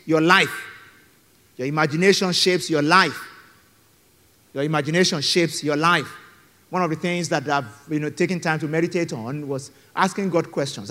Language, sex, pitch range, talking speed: English, male, 115-155 Hz, 160 wpm